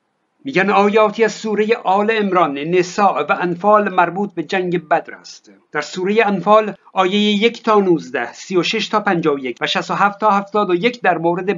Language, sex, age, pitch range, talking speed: Persian, male, 60-79, 165-225 Hz, 170 wpm